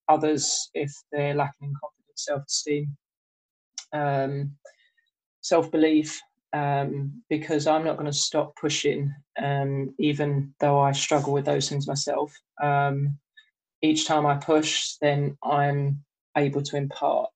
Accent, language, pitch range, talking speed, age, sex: British, English, 140-160 Hz, 125 wpm, 20-39, male